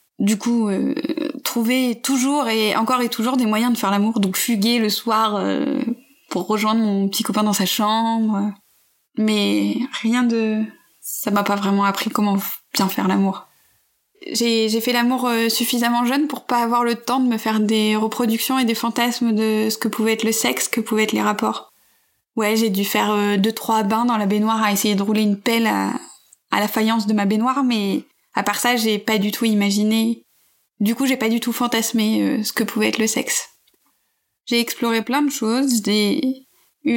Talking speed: 200 wpm